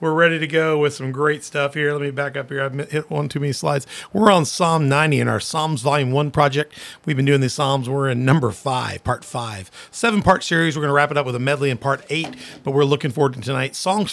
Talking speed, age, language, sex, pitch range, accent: 265 wpm, 40-59, English, male, 130-160 Hz, American